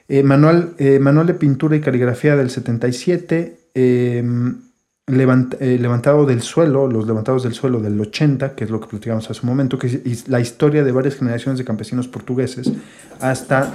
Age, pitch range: 40-59, 120-140 Hz